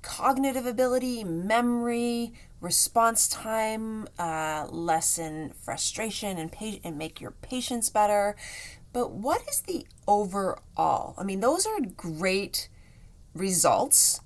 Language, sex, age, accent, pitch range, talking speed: English, female, 30-49, American, 165-230 Hz, 110 wpm